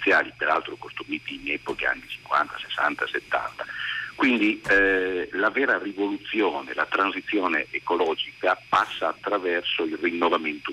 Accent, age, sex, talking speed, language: native, 50-69, male, 110 wpm, Italian